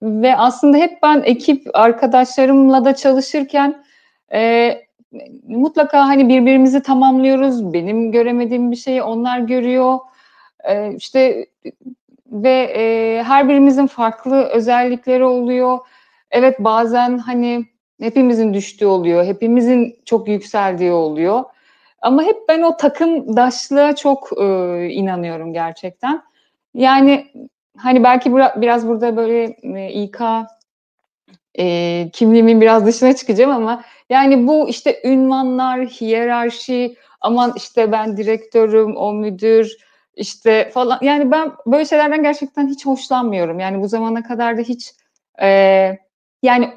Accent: native